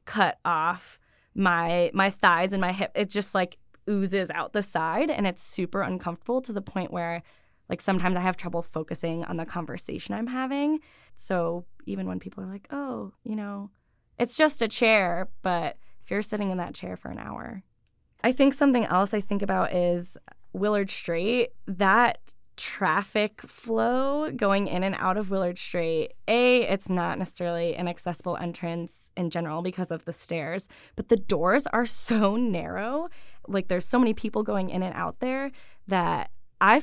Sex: female